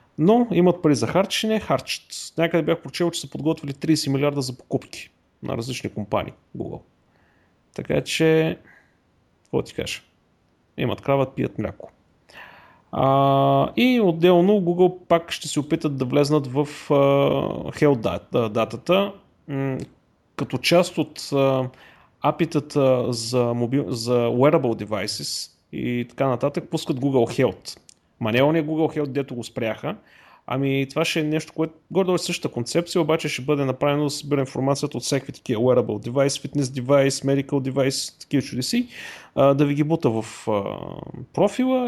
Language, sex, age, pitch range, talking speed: Bulgarian, male, 30-49, 125-160 Hz, 145 wpm